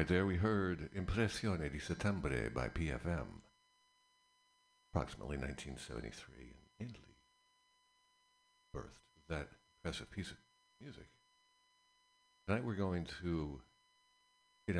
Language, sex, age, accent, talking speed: English, male, 60-79, American, 95 wpm